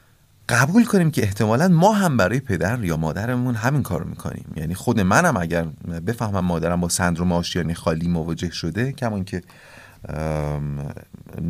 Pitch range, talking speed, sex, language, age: 90-140 Hz, 150 wpm, male, Persian, 30-49